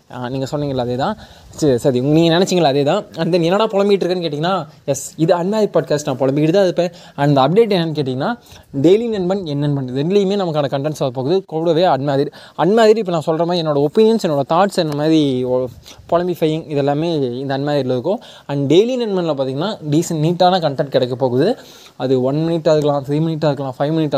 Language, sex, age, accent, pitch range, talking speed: Tamil, male, 20-39, native, 135-175 Hz, 180 wpm